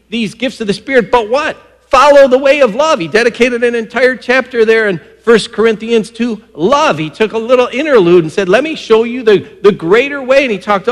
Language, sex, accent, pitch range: English, male, American, 205-260 Hz